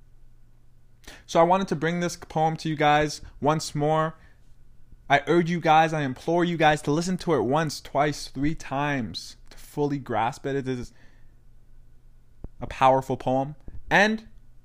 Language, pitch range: English, 120-155 Hz